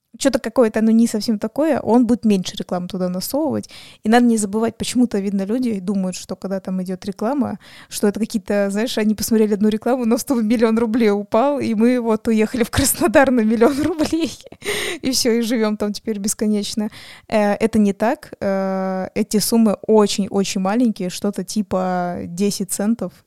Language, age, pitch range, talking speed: Russian, 20-39, 195-235 Hz, 170 wpm